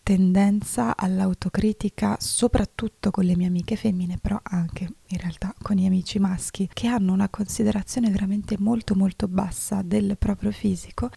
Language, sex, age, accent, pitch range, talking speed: Italian, female, 20-39, native, 180-210 Hz, 145 wpm